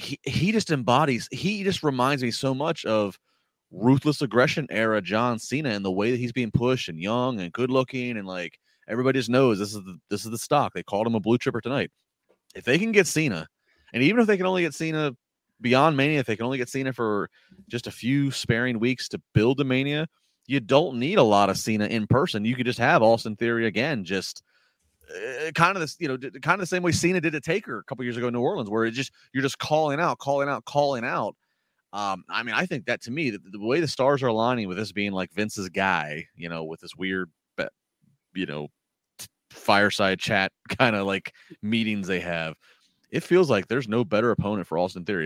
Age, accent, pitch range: 30-49, American, 95-140 Hz